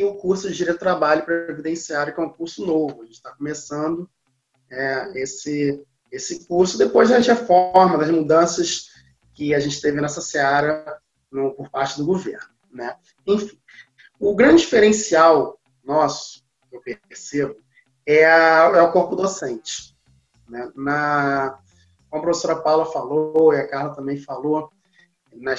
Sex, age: male, 20-39